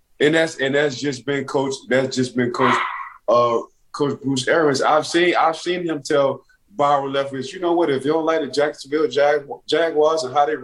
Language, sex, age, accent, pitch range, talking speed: English, male, 20-39, American, 115-150 Hz, 210 wpm